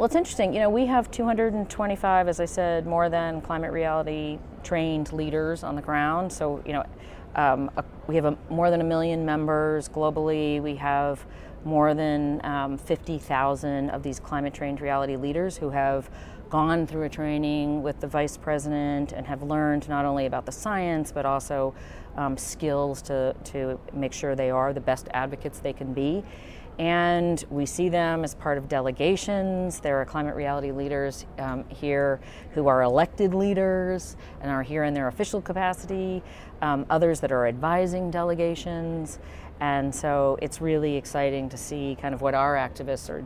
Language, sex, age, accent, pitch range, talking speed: English, female, 40-59, American, 140-165 Hz, 170 wpm